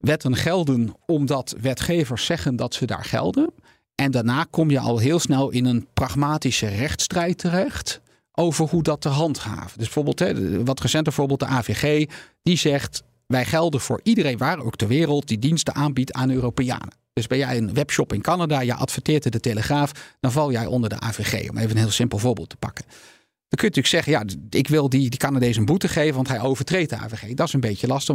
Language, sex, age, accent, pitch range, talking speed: Dutch, male, 40-59, Dutch, 120-150 Hz, 210 wpm